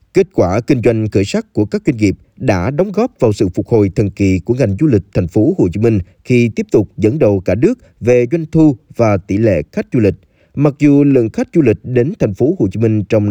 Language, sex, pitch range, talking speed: Vietnamese, male, 100-140 Hz, 255 wpm